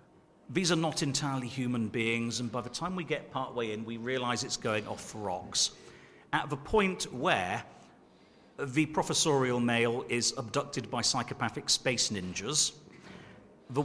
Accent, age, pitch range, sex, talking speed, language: British, 40-59, 120-145 Hz, male, 150 wpm, Italian